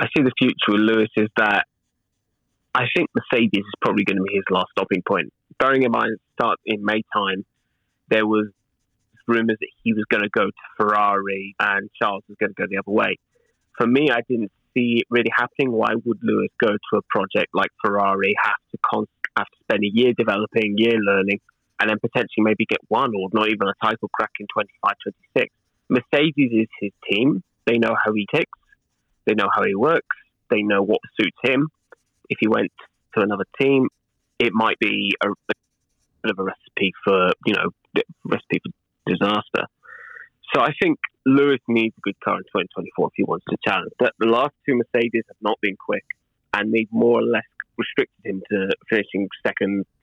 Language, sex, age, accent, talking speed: English, male, 20-39, British, 190 wpm